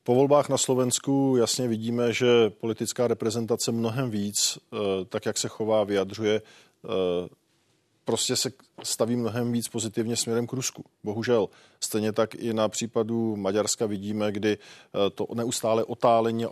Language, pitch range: Czech, 110-120 Hz